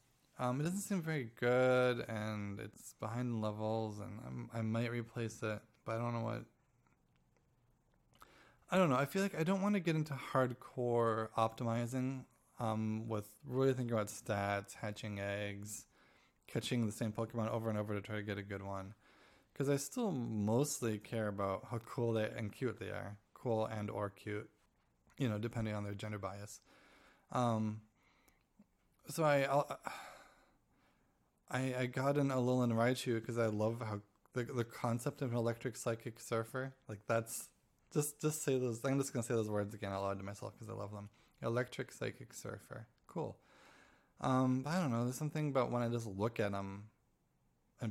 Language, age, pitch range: English, 20-39, 105-130 Hz